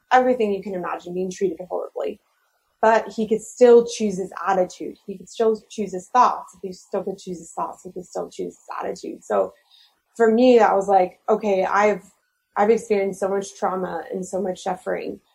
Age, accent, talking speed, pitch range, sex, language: 20-39, American, 195 wpm, 190-220 Hz, female, English